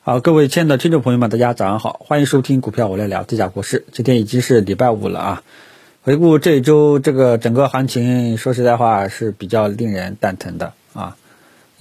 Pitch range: 110-150 Hz